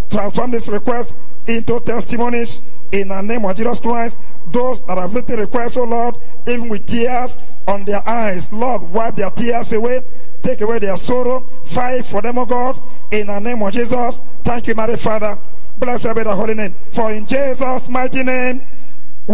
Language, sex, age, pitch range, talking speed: English, male, 50-69, 215-245 Hz, 180 wpm